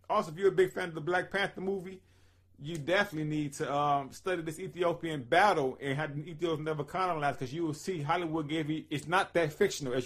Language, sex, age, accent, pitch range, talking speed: English, male, 30-49, American, 120-160 Hz, 225 wpm